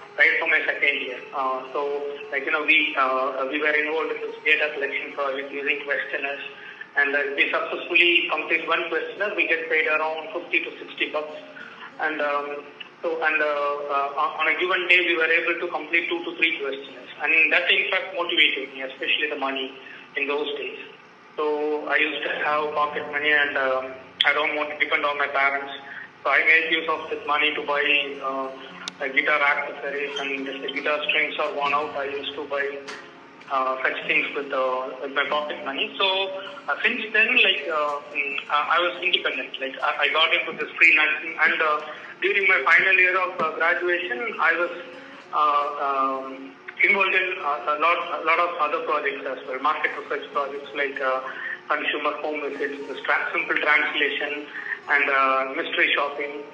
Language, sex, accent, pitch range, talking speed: English, male, Indian, 140-165 Hz, 185 wpm